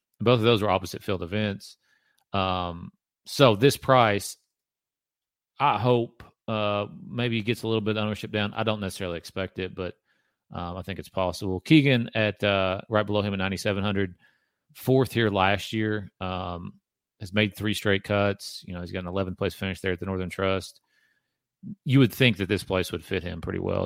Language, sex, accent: English, male, American